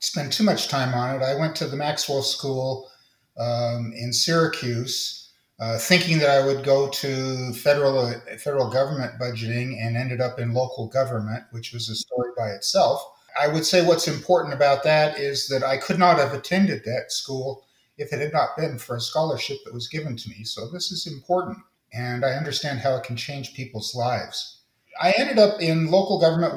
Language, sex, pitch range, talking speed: English, male, 120-150 Hz, 195 wpm